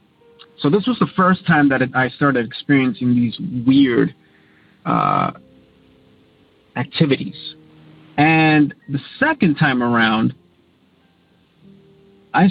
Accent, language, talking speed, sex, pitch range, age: American, English, 95 wpm, male, 130-175 Hz, 30-49